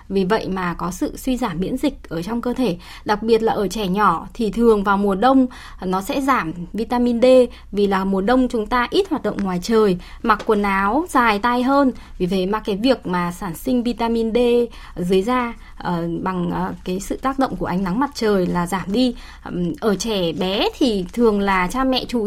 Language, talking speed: Vietnamese, 220 wpm